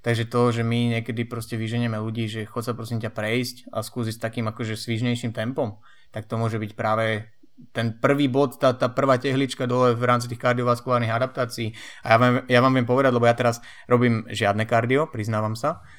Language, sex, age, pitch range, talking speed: Slovak, male, 20-39, 115-125 Hz, 205 wpm